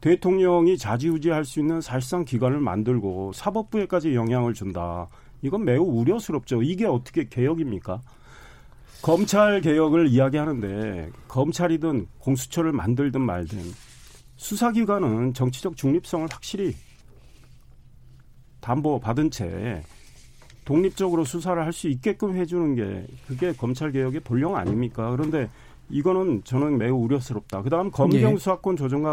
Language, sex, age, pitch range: Korean, male, 40-59, 120-175 Hz